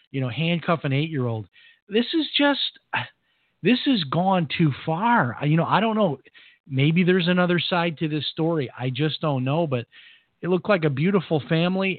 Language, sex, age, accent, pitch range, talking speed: English, male, 40-59, American, 125-155 Hz, 190 wpm